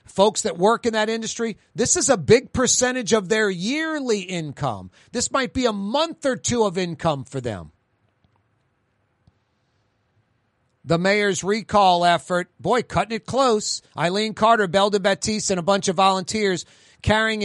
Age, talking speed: 40-59, 150 wpm